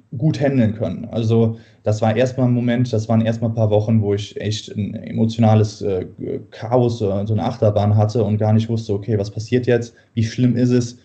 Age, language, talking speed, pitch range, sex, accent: 20-39, German, 205 wpm, 110-120 Hz, male, German